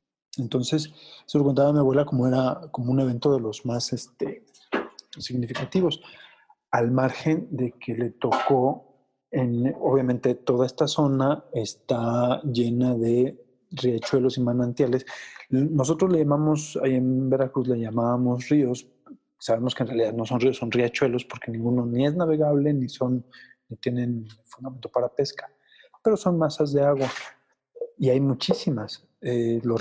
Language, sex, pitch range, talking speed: Spanish, male, 120-140 Hz, 145 wpm